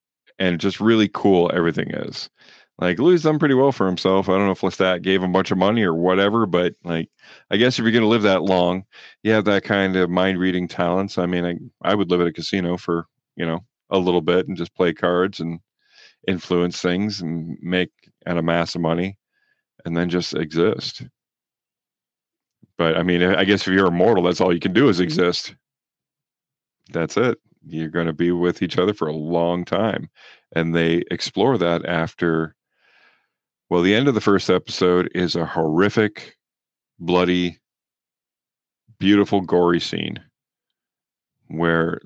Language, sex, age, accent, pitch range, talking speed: English, male, 40-59, American, 85-100 Hz, 180 wpm